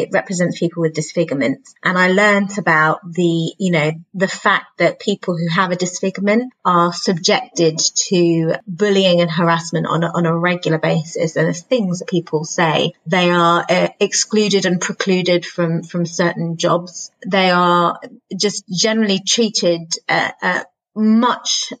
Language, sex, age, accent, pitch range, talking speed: English, female, 30-49, British, 170-200 Hz, 155 wpm